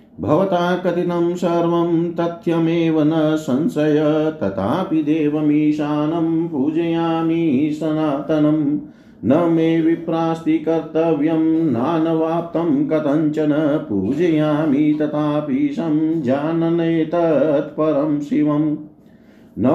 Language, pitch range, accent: Hindi, 150-165 Hz, native